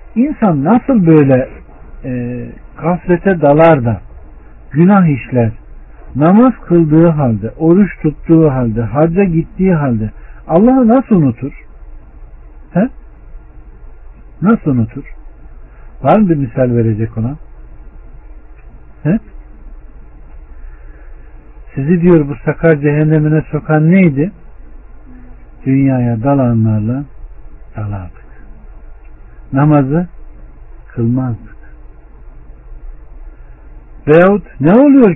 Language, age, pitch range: Turkish, 60-79, 115-165 Hz